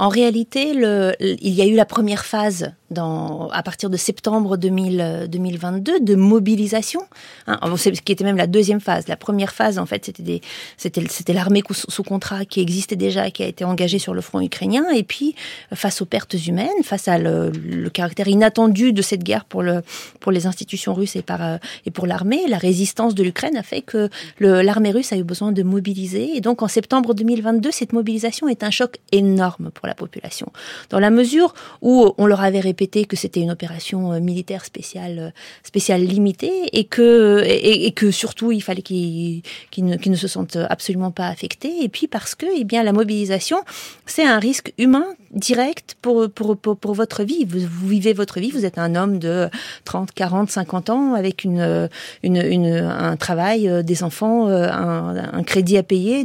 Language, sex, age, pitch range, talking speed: French, female, 40-59, 180-220 Hz, 200 wpm